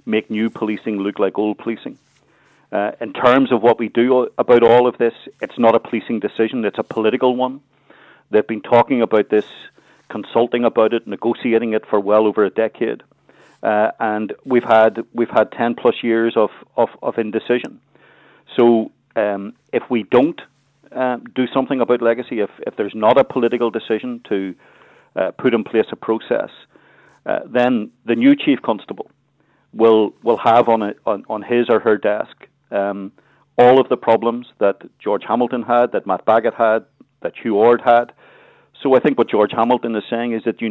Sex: male